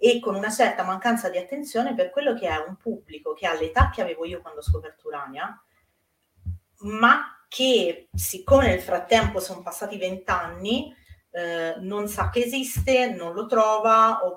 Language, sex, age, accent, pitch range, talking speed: Italian, female, 30-49, native, 160-220 Hz, 165 wpm